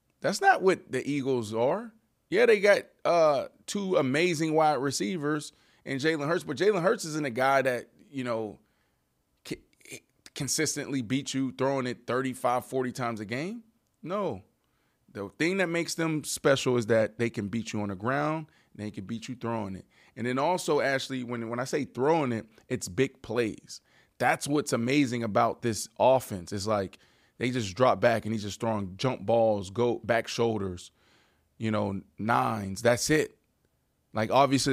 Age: 20-39